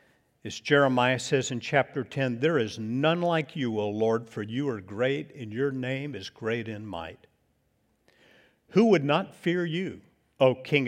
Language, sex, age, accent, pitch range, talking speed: English, male, 60-79, American, 105-140 Hz, 170 wpm